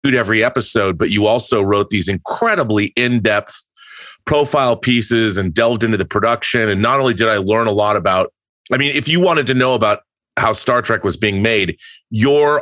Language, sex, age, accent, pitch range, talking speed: English, male, 30-49, American, 100-125 Hz, 190 wpm